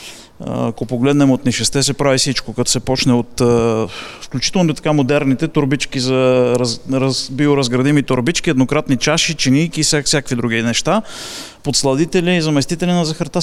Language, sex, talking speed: Bulgarian, male, 155 wpm